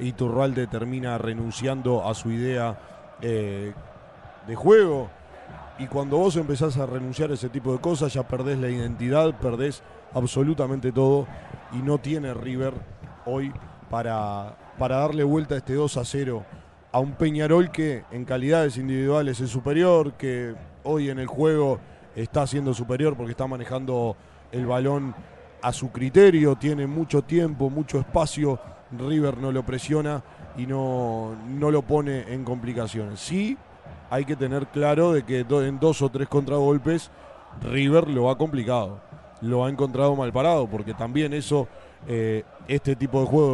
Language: Spanish